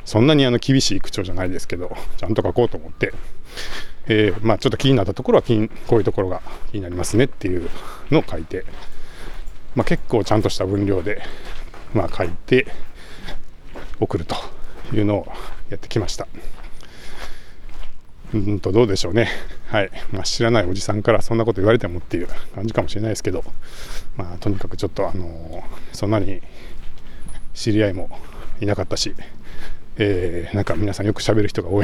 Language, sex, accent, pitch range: Japanese, male, native, 90-115 Hz